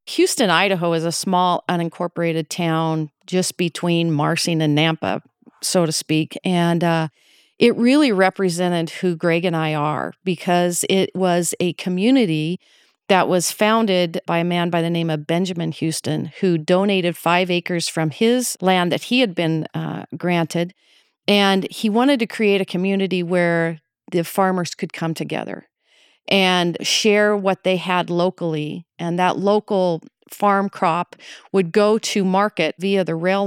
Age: 40-59